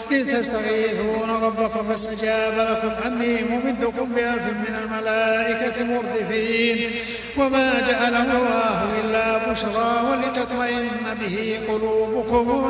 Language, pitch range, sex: Arabic, 220-245 Hz, male